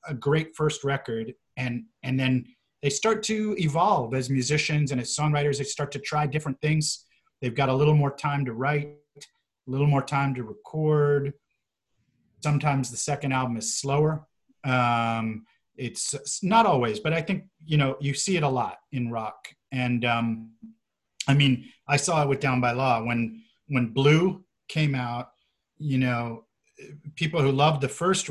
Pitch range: 125-150 Hz